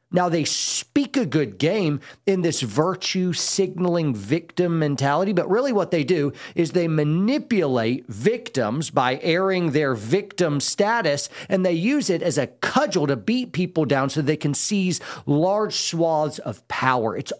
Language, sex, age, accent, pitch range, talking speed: English, male, 40-59, American, 150-195 Hz, 155 wpm